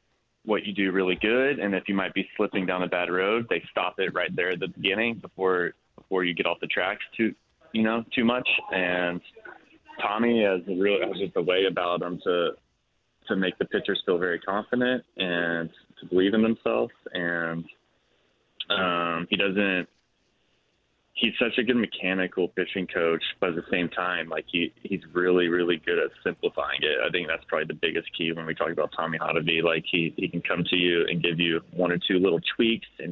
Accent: American